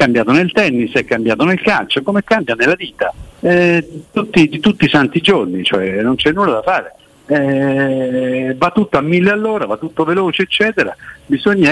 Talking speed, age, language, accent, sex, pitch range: 180 wpm, 60-79, Italian, native, male, 120-185 Hz